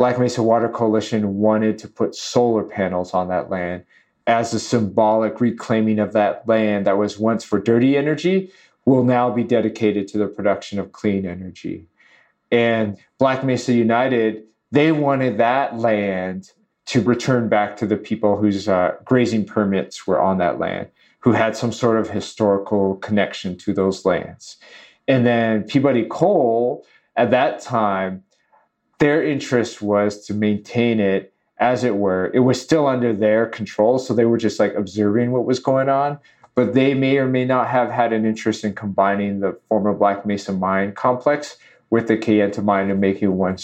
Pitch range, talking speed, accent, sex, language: 100-120 Hz, 170 wpm, American, male, English